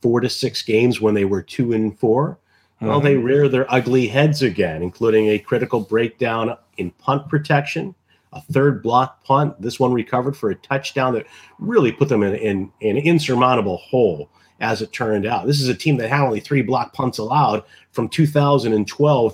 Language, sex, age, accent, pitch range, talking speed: English, male, 40-59, American, 115-145 Hz, 185 wpm